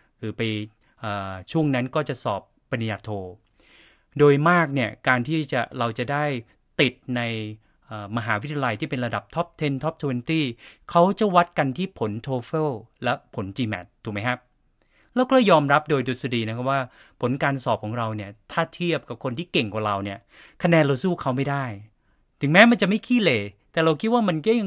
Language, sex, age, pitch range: Thai, male, 20-39, 110-150 Hz